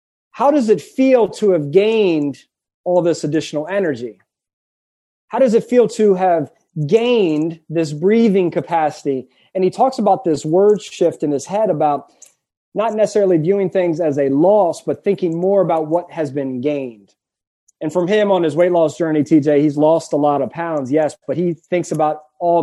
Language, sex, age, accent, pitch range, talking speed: English, male, 30-49, American, 150-190 Hz, 180 wpm